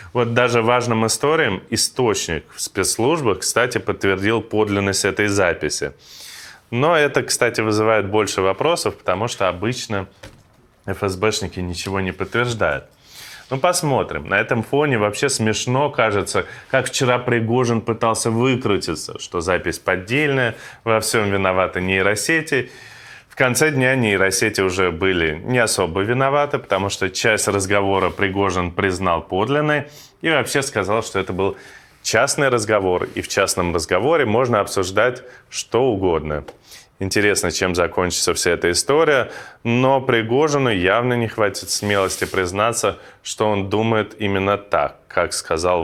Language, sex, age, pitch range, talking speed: Russian, male, 20-39, 95-125 Hz, 125 wpm